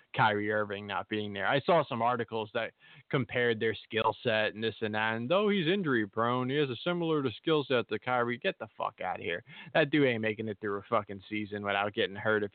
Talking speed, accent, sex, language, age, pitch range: 245 wpm, American, male, English, 20-39, 110-135 Hz